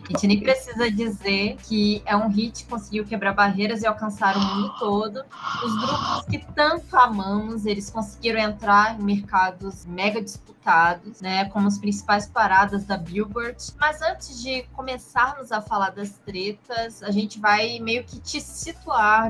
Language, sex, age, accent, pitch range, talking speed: Portuguese, female, 20-39, Brazilian, 200-230 Hz, 160 wpm